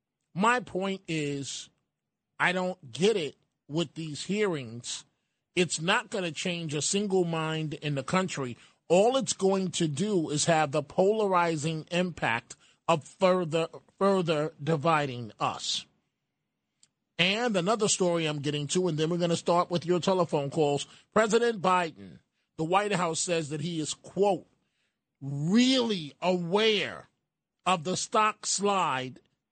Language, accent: English, American